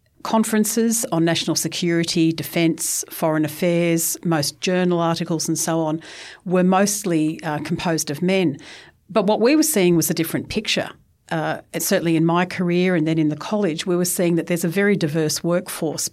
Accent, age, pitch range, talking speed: Australian, 40-59, 160-190 Hz, 175 wpm